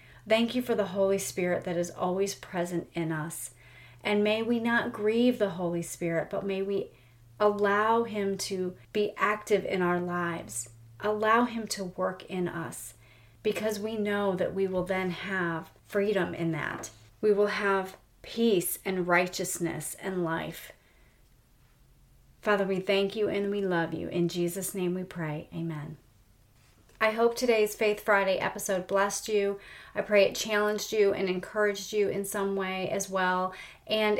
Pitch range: 175-210 Hz